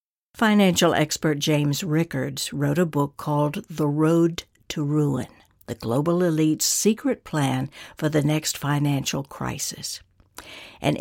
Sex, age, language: female, 60-79, English